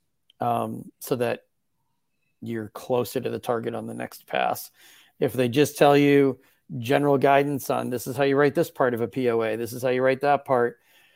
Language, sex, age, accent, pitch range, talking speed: English, male, 30-49, American, 120-140 Hz, 200 wpm